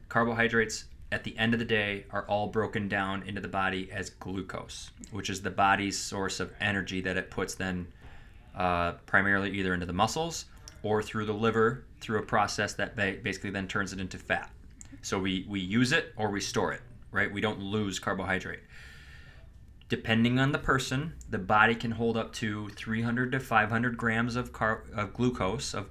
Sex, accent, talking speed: male, American, 185 wpm